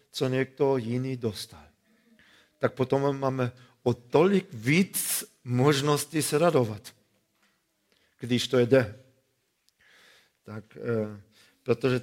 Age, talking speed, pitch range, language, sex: 50-69, 85 wpm, 120-140 Hz, Czech, male